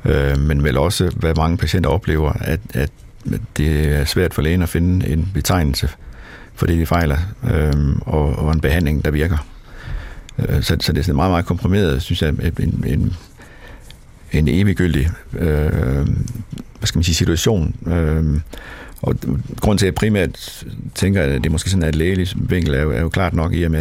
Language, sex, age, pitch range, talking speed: Danish, male, 60-79, 80-95 Hz, 180 wpm